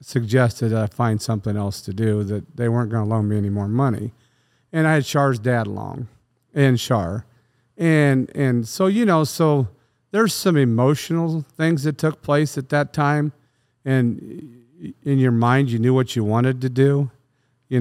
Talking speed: 180 wpm